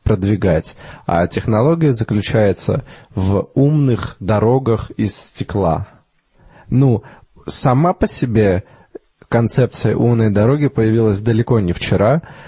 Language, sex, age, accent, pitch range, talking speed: Russian, male, 20-39, native, 100-125 Hz, 90 wpm